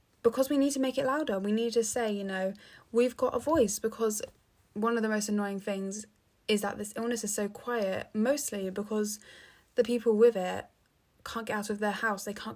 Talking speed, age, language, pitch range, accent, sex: 215 wpm, 10-29, English, 200-230 Hz, British, female